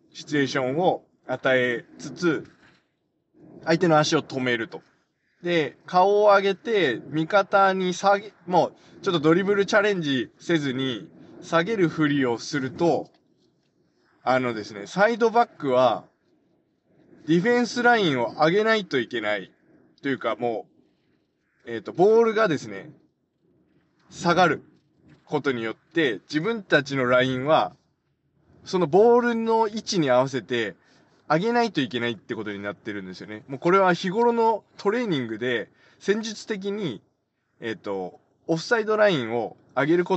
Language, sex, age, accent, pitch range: Japanese, male, 20-39, native, 125-195 Hz